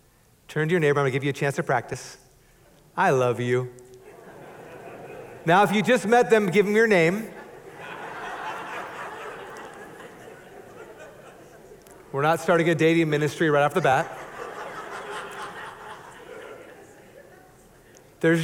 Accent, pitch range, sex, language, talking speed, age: American, 125-165 Hz, male, English, 120 wpm, 40-59